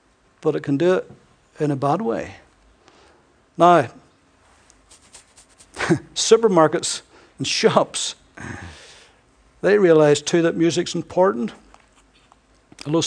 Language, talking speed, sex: English, 90 wpm, male